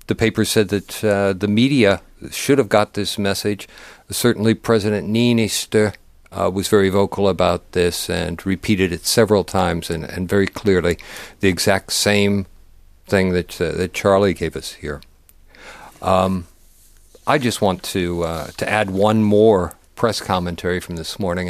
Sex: male